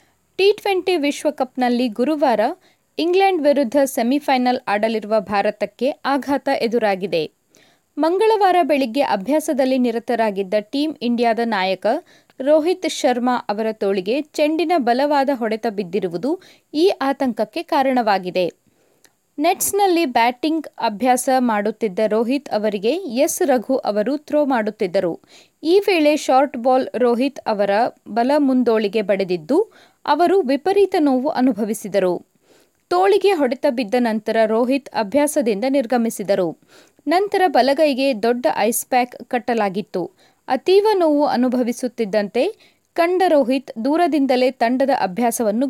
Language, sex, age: Kannada, female, 20-39